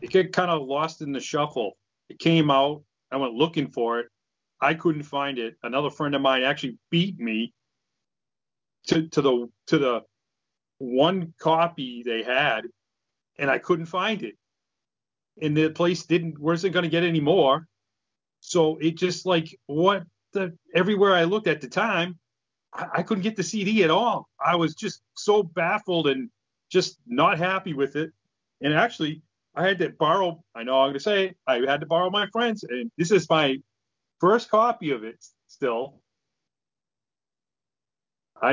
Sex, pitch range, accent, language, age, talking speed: male, 140-190 Hz, American, English, 30-49, 175 wpm